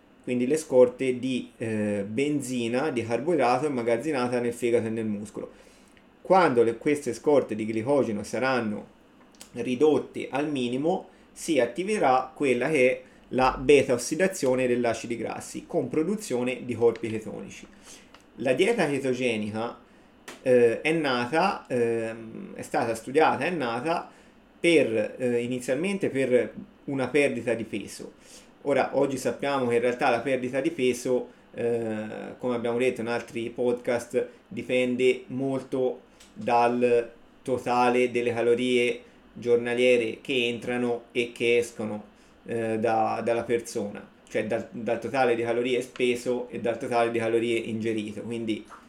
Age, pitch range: 30-49, 115-130 Hz